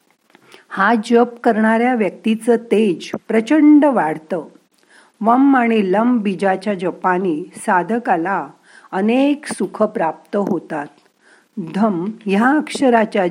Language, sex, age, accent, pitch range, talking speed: Marathi, female, 50-69, native, 190-255 Hz, 60 wpm